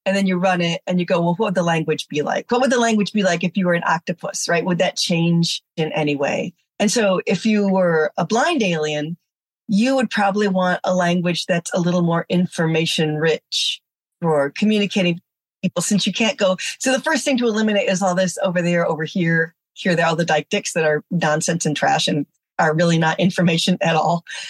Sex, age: female, 30-49